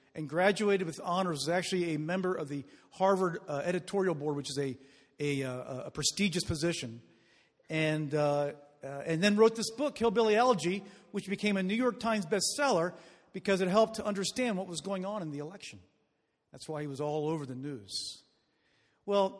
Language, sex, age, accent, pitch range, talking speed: English, male, 50-69, American, 145-200 Hz, 190 wpm